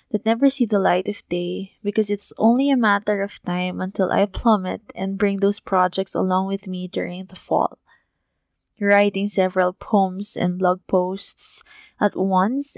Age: 20-39